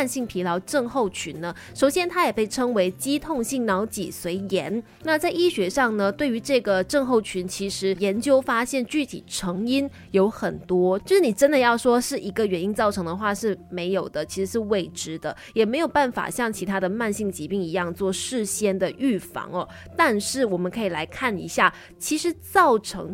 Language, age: Chinese, 20-39